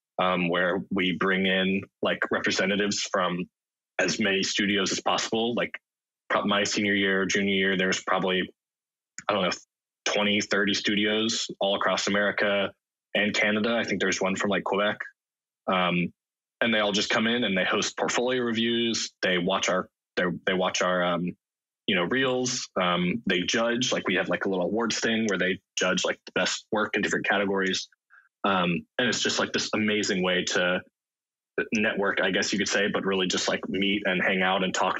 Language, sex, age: English, male, 20-39